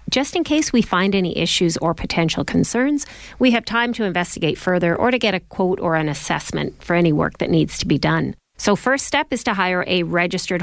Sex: female